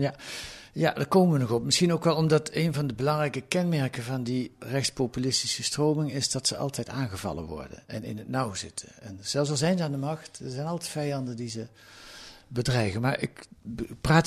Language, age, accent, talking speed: Dutch, 60-79, Dutch, 205 wpm